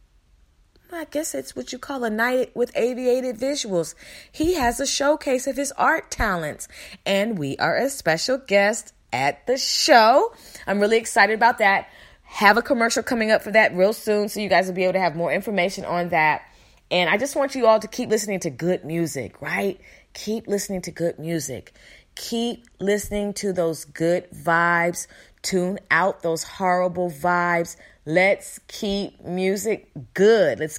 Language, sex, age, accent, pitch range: Japanese, female, 30-49, American, 180-250 Hz